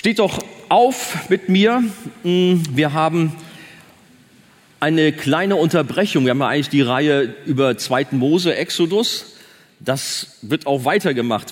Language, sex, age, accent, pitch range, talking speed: German, male, 40-59, German, 115-165 Hz, 125 wpm